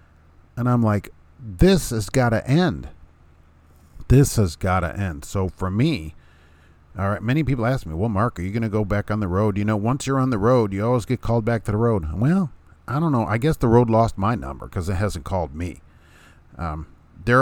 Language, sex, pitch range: English, male, 85-120 Hz